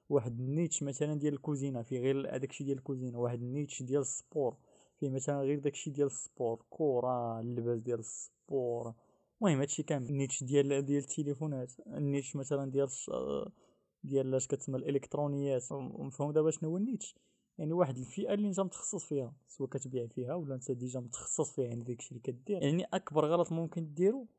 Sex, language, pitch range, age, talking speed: male, Arabic, 130-160 Hz, 20-39, 175 wpm